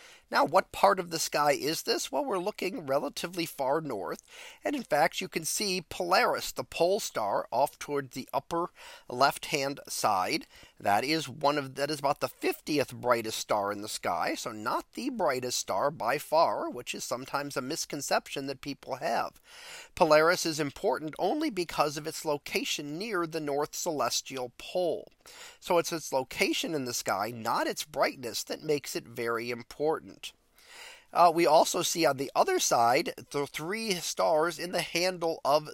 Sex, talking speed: male, 165 wpm